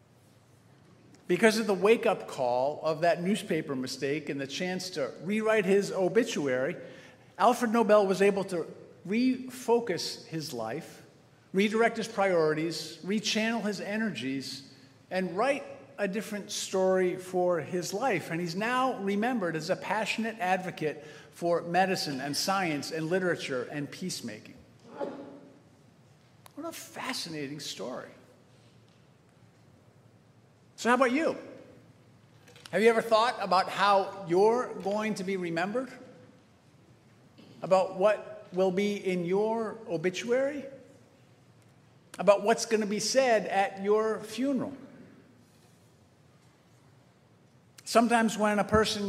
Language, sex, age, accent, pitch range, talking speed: English, male, 50-69, American, 165-220 Hz, 115 wpm